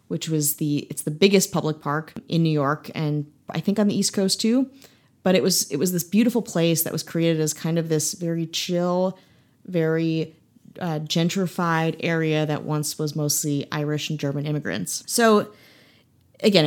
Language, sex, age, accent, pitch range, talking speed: English, female, 30-49, American, 150-185 Hz, 180 wpm